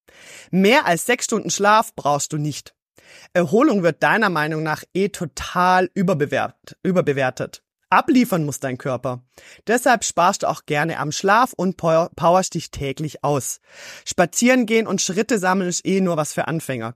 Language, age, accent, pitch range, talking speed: German, 30-49, German, 155-205 Hz, 150 wpm